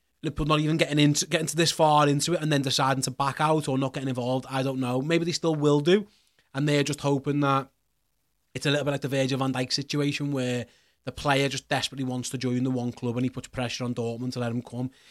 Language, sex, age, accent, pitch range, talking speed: English, male, 30-49, British, 125-150 Hz, 255 wpm